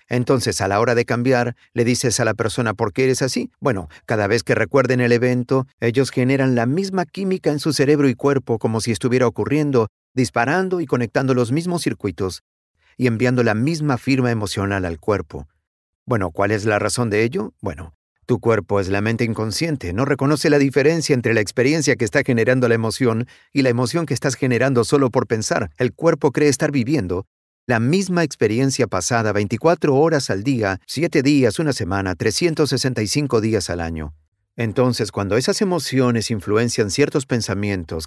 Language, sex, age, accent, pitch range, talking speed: Spanish, male, 50-69, Mexican, 105-140 Hz, 180 wpm